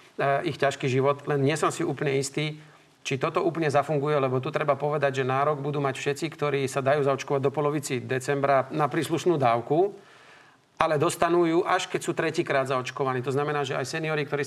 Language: Slovak